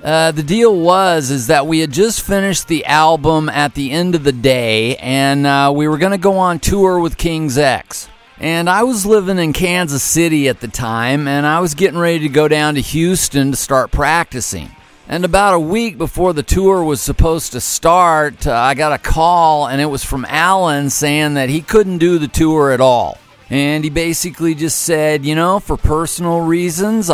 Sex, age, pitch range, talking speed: male, 40-59, 140-170 Hz, 205 wpm